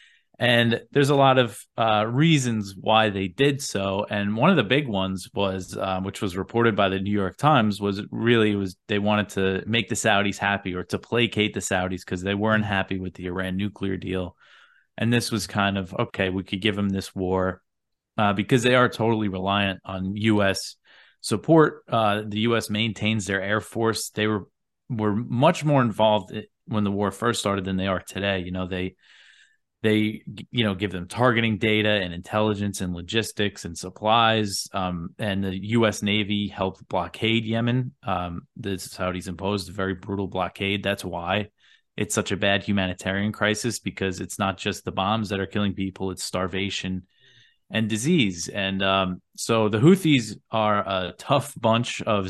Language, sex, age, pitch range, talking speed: English, male, 30-49, 95-110 Hz, 185 wpm